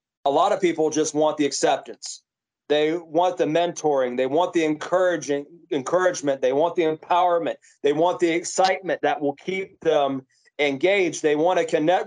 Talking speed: 170 wpm